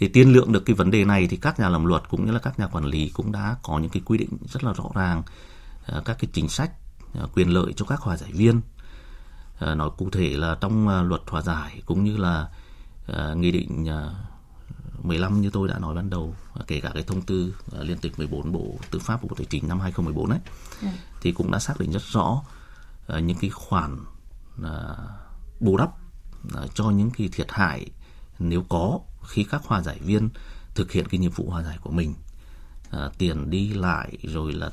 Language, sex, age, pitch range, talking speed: Vietnamese, male, 30-49, 75-100 Hz, 200 wpm